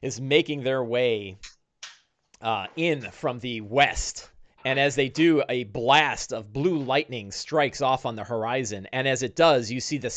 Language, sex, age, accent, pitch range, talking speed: English, male, 30-49, American, 110-145 Hz, 175 wpm